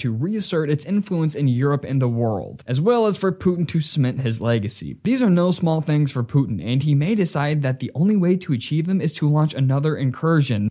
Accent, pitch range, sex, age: American, 125-170 Hz, male, 20-39